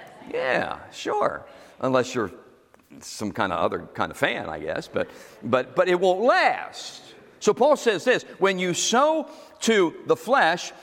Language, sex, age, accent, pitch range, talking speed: English, male, 50-69, American, 160-225 Hz, 160 wpm